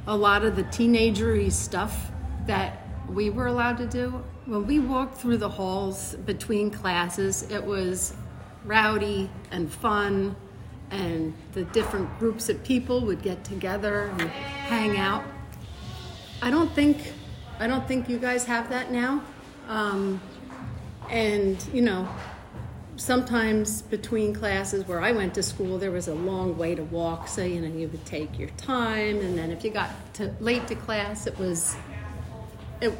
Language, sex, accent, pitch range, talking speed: English, female, American, 165-225 Hz, 155 wpm